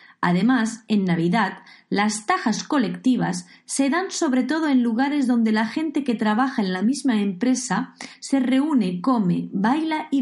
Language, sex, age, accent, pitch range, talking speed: Spanish, female, 30-49, Spanish, 195-270 Hz, 155 wpm